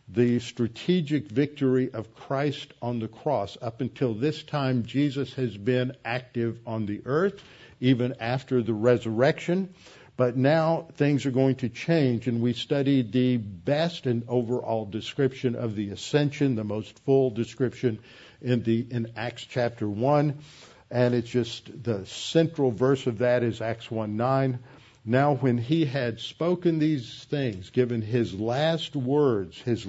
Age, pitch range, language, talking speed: 60-79, 115-140 Hz, English, 150 wpm